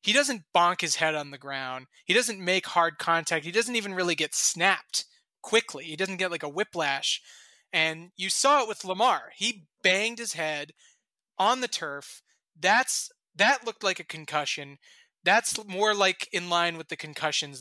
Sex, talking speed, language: male, 180 wpm, English